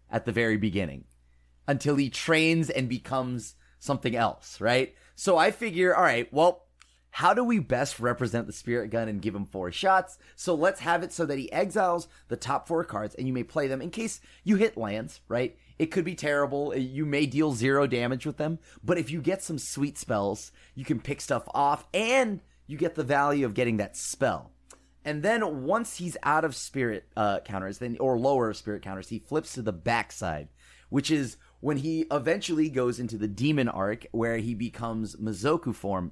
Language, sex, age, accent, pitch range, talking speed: English, male, 30-49, American, 110-155 Hz, 200 wpm